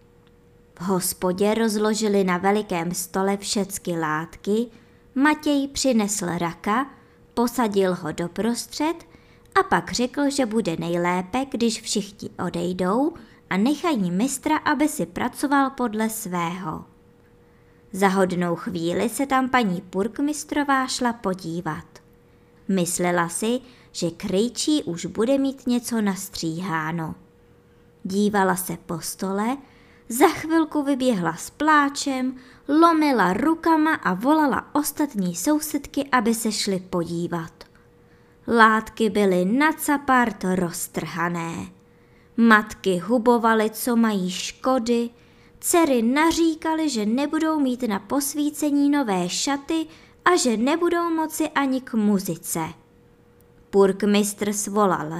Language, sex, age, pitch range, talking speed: Czech, male, 20-39, 185-275 Hz, 105 wpm